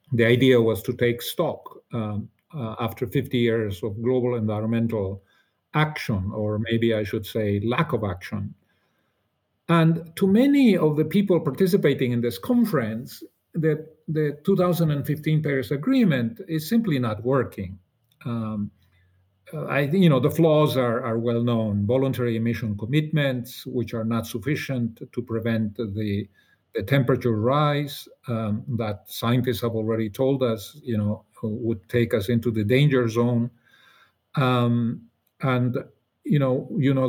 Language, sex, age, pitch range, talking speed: English, male, 50-69, 110-145 Hz, 140 wpm